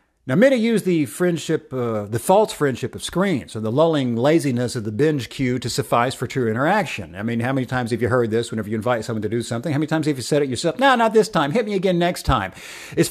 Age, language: 50-69, English